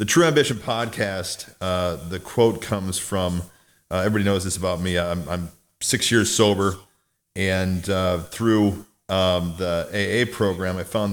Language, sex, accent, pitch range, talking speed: English, male, American, 95-110 Hz, 155 wpm